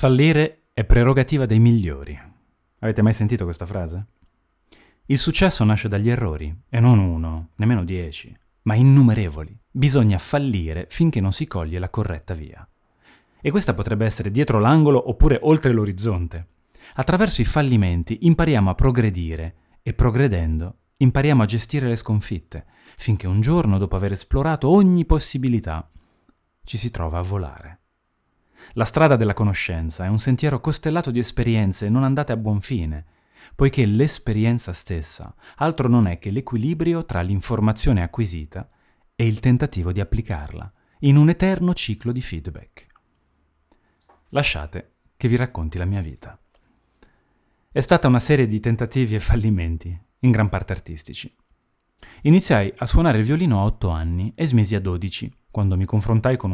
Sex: male